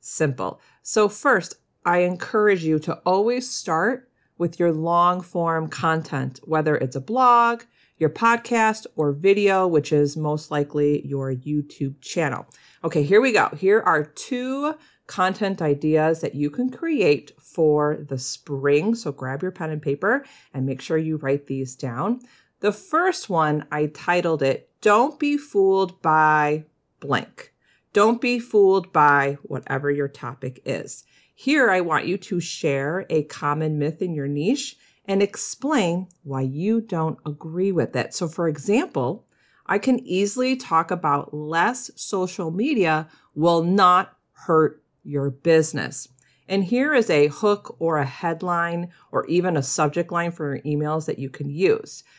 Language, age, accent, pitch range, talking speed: English, 40-59, American, 150-205 Hz, 150 wpm